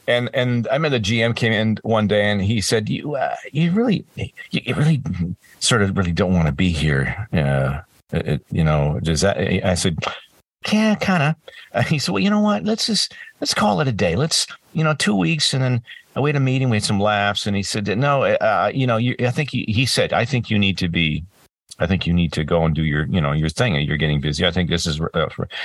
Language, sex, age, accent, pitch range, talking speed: English, male, 50-69, American, 85-120 Hz, 255 wpm